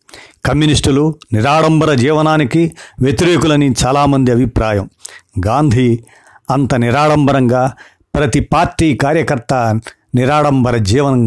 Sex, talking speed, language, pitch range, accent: male, 75 wpm, Telugu, 120-150 Hz, native